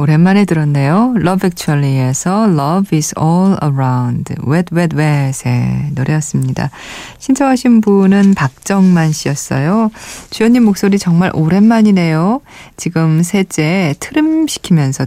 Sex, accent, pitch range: female, native, 140-195 Hz